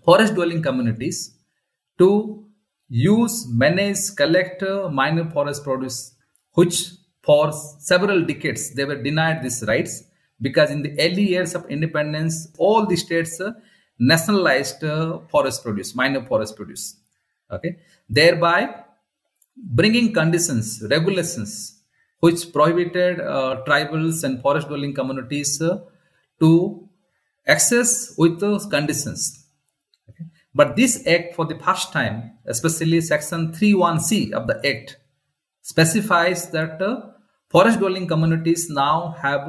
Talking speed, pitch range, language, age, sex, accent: 120 wpm, 135-175 Hz, English, 40-59, male, Indian